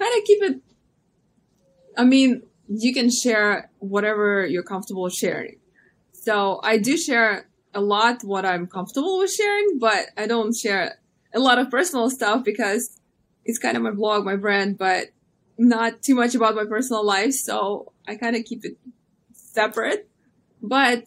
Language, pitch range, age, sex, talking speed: English, 195-235 Hz, 20-39, female, 160 wpm